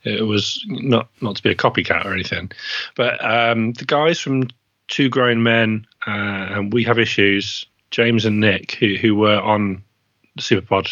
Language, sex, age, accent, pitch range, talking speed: English, male, 30-49, British, 100-120 Hz, 170 wpm